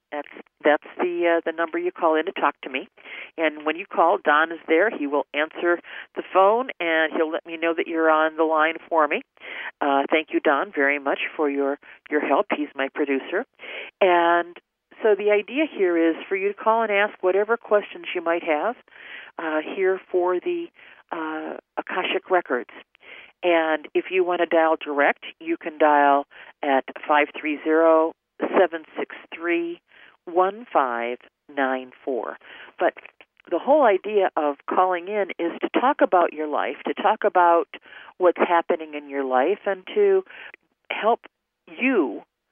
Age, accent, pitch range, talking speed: 50-69, American, 150-195 Hz, 160 wpm